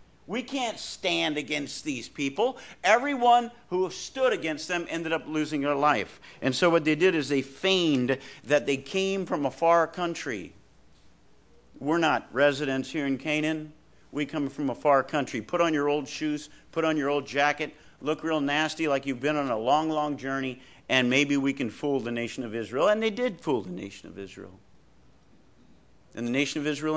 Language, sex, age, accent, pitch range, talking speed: English, male, 50-69, American, 135-180 Hz, 190 wpm